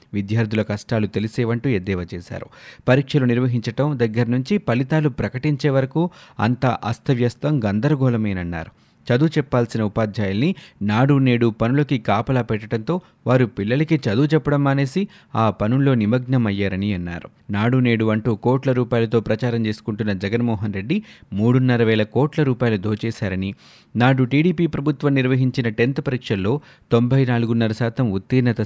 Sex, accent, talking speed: male, native, 110 wpm